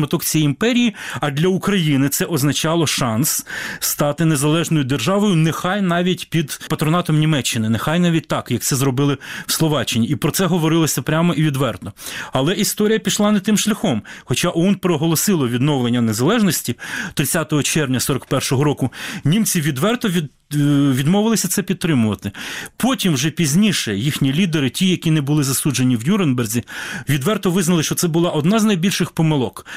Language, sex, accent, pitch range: Ukrainian, male, native, 140-185 Hz